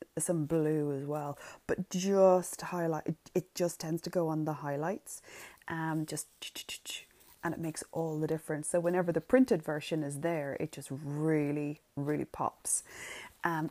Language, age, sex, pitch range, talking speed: English, 30-49, female, 150-185 Hz, 160 wpm